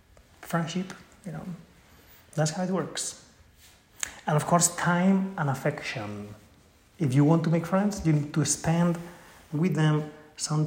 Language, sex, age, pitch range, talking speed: English, male, 30-49, 130-165 Hz, 145 wpm